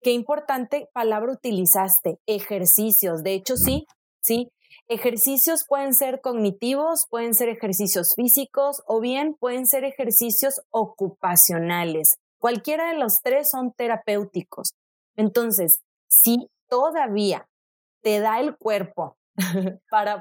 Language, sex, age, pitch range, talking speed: Spanish, female, 30-49, 200-250 Hz, 110 wpm